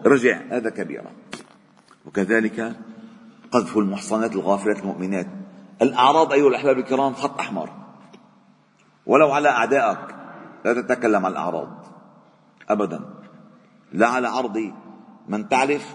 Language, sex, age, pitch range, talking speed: Arabic, male, 40-59, 120-200 Hz, 100 wpm